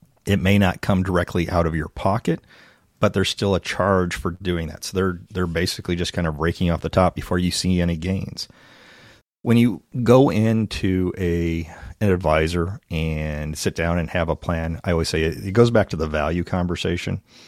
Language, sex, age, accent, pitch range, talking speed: English, male, 40-59, American, 80-95 Hz, 200 wpm